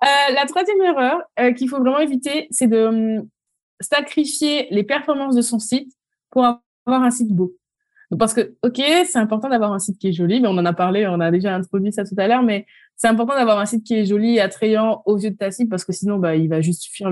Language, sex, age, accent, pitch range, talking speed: French, female, 20-39, French, 195-255 Hz, 250 wpm